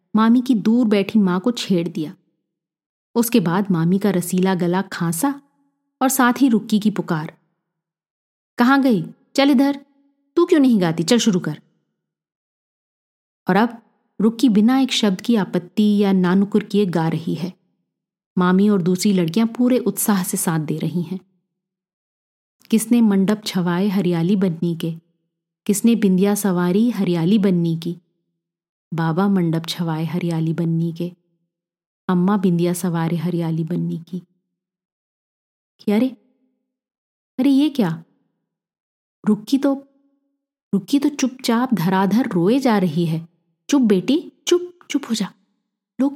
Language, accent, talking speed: Hindi, native, 135 wpm